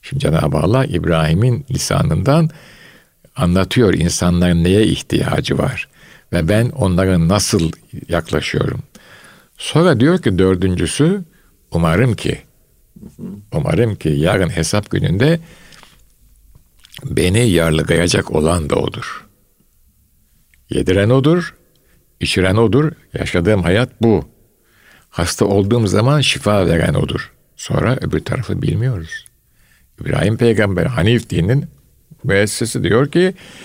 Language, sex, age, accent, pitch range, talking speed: Turkish, male, 60-79, native, 95-140 Hz, 100 wpm